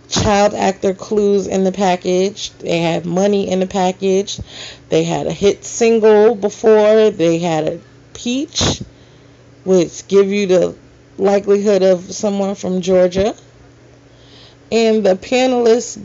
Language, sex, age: English, female, 30-49